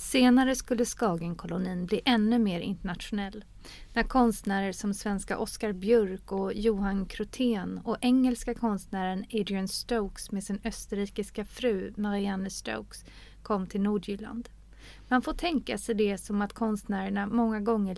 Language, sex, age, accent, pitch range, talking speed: Swedish, female, 30-49, native, 195-230 Hz, 135 wpm